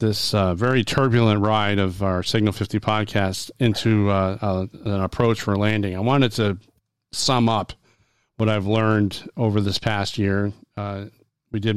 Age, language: 40-59, English